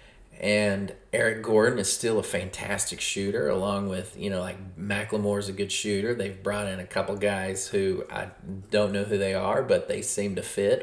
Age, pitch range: 30-49, 95-115 Hz